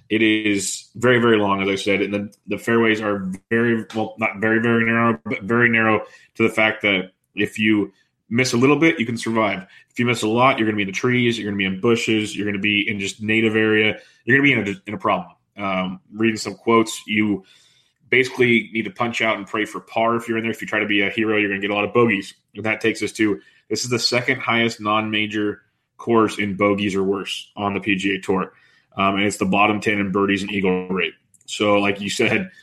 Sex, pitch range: male, 100-115 Hz